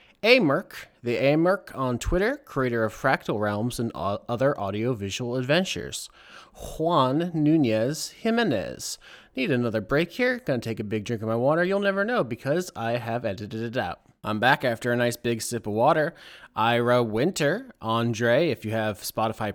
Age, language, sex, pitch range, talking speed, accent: 20-39, English, male, 110-140 Hz, 170 wpm, American